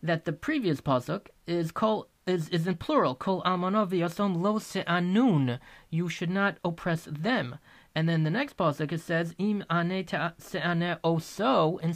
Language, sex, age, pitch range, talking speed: English, male, 30-49, 155-205 Hz, 165 wpm